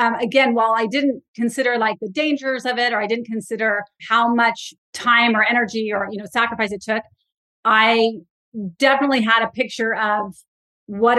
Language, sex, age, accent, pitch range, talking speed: English, female, 30-49, American, 205-235 Hz, 175 wpm